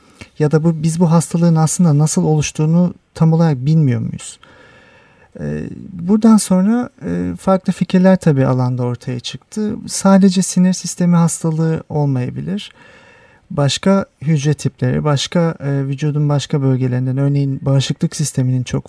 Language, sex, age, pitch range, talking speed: Turkish, male, 40-59, 130-175 Hz, 125 wpm